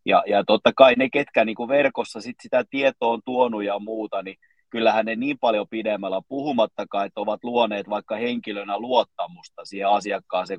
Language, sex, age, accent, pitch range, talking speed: Finnish, male, 30-49, native, 105-175 Hz, 170 wpm